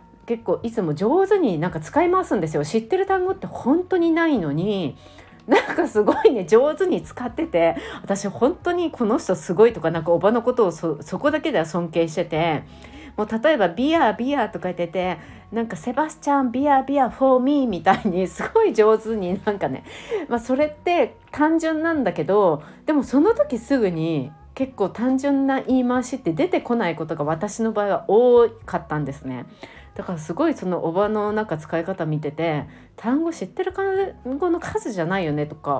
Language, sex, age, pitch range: Japanese, female, 40-59, 170-270 Hz